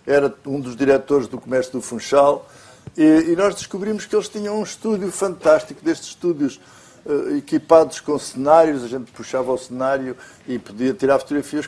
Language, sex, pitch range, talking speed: Portuguese, male, 125-155 Hz, 170 wpm